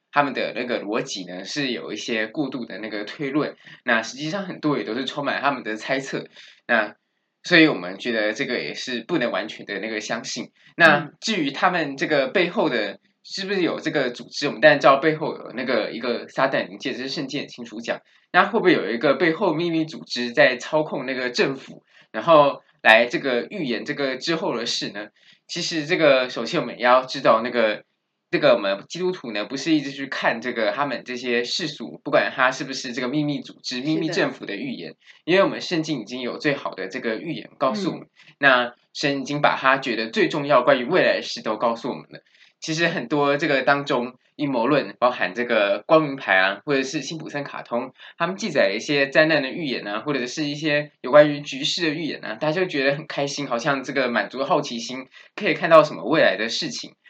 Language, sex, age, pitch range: Chinese, male, 20-39, 125-155 Hz